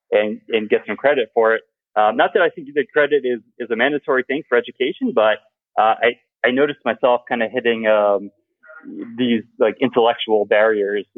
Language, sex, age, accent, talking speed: English, male, 30-49, American, 190 wpm